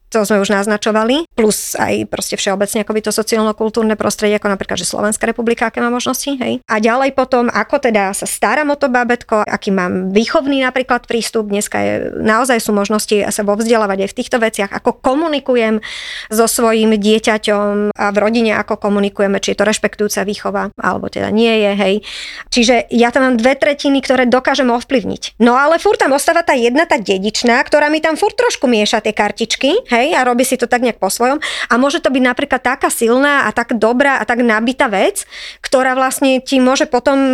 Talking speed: 200 wpm